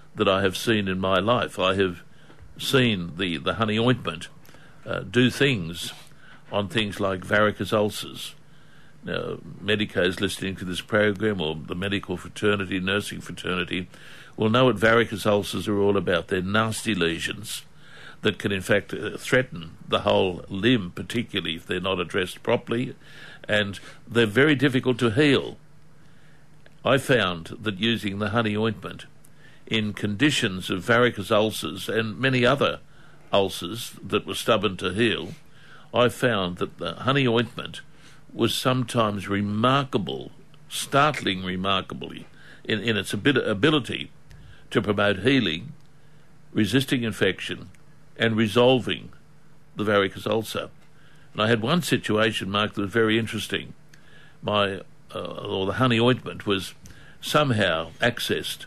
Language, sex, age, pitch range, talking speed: English, male, 60-79, 100-130 Hz, 135 wpm